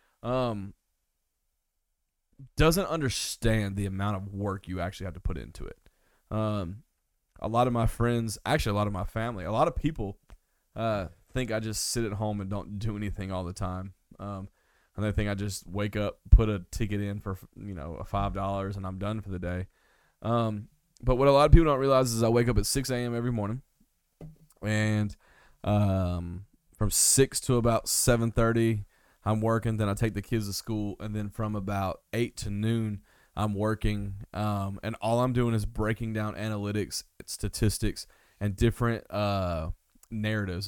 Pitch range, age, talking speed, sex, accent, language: 95-115 Hz, 20-39, 185 wpm, male, American, English